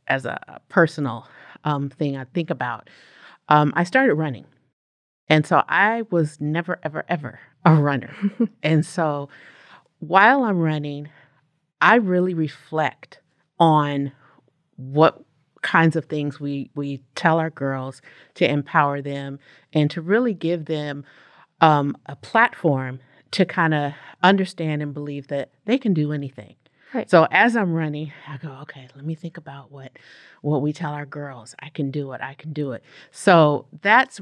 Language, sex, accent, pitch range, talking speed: English, female, American, 145-170 Hz, 155 wpm